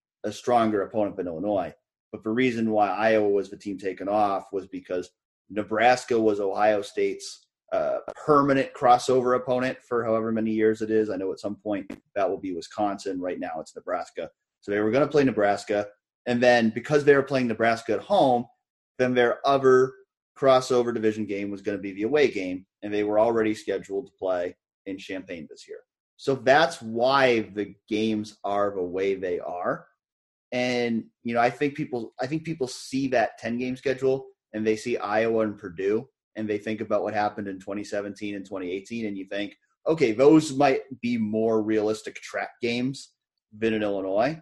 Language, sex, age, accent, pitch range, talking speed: English, male, 30-49, American, 105-130 Hz, 185 wpm